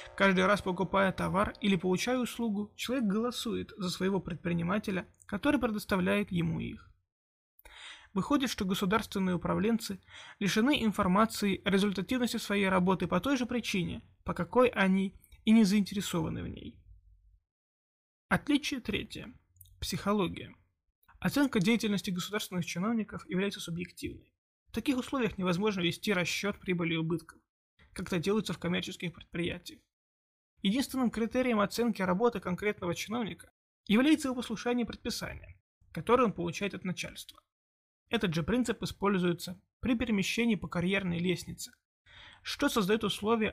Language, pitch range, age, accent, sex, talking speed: Russian, 175-225 Hz, 20-39, native, male, 125 wpm